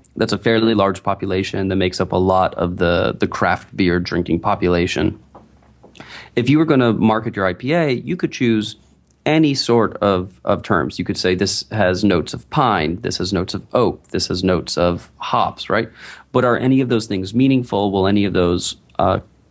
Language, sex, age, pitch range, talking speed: English, male, 30-49, 95-115 Hz, 195 wpm